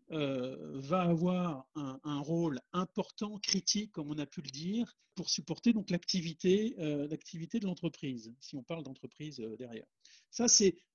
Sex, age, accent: male, 50-69, French